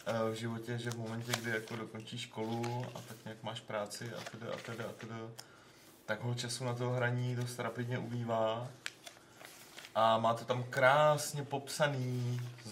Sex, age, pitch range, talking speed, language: male, 30-49, 105-120 Hz, 150 wpm, Czech